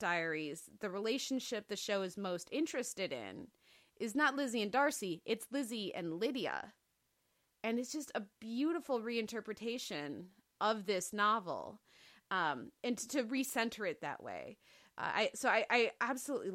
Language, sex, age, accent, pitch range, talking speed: English, female, 30-49, American, 190-235 Hz, 150 wpm